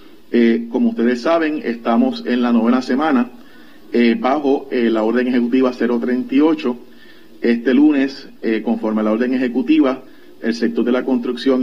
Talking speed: 150 wpm